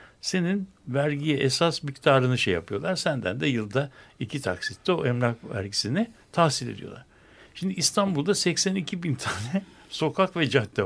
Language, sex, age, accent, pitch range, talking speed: Turkish, male, 60-79, native, 115-160 Hz, 140 wpm